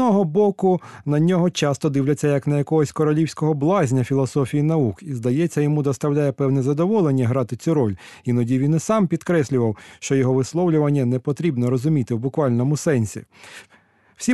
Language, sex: Ukrainian, male